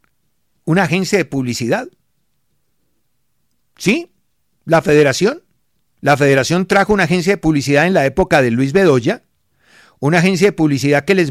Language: Spanish